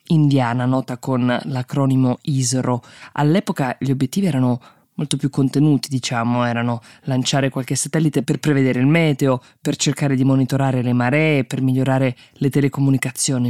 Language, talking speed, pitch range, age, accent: Italian, 140 wpm, 125-150 Hz, 20-39, native